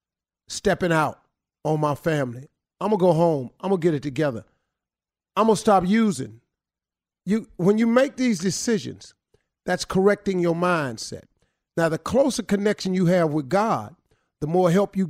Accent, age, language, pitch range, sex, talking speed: American, 50-69, English, 135-185 Hz, male, 160 wpm